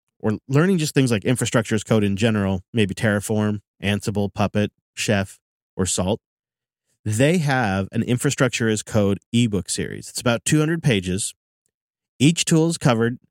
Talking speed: 150 wpm